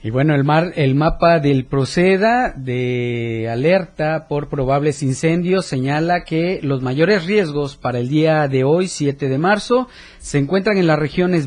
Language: Spanish